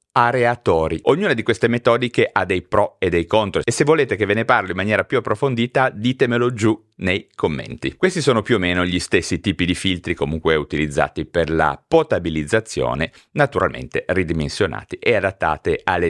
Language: Italian